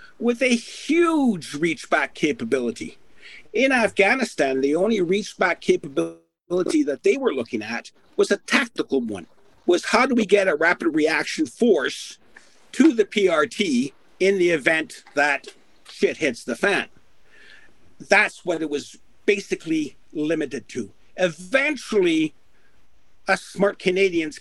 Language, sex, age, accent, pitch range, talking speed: English, male, 50-69, American, 155-245 Hz, 125 wpm